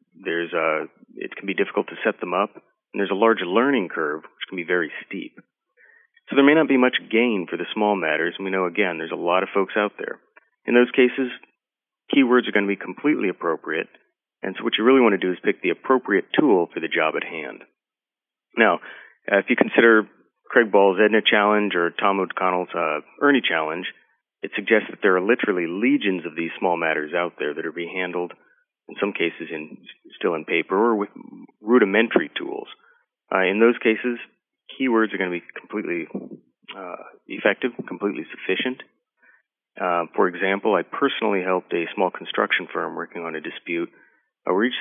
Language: English